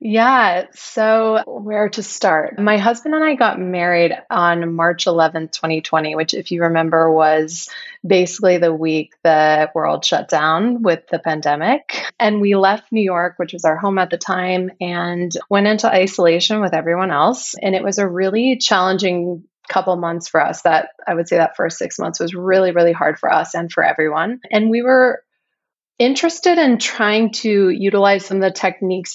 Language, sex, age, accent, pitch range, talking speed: English, female, 20-39, American, 175-210 Hz, 180 wpm